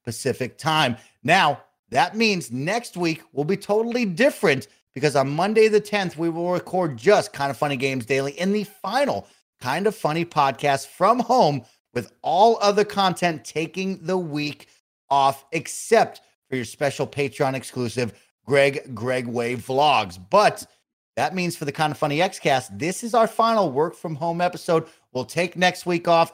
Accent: American